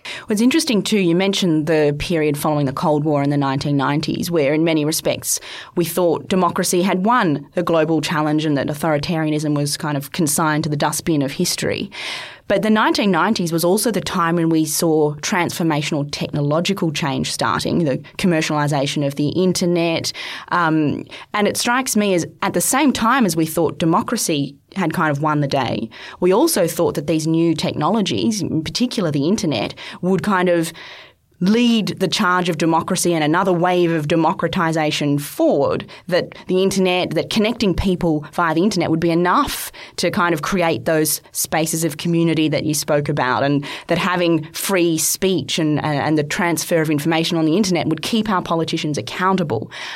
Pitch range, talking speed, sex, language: 155-185 Hz, 175 wpm, female, English